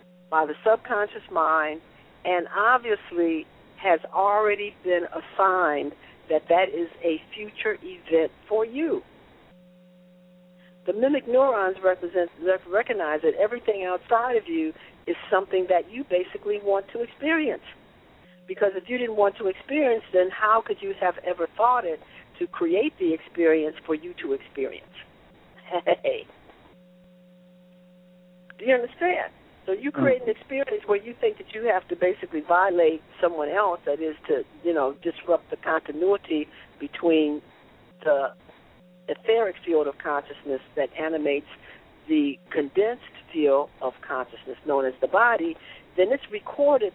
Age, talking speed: 60-79, 135 wpm